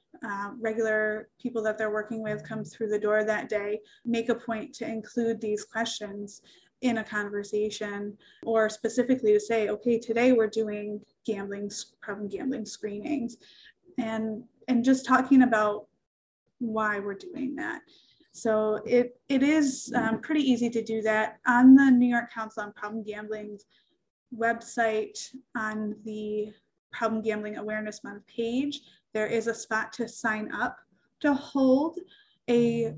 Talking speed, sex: 145 wpm, female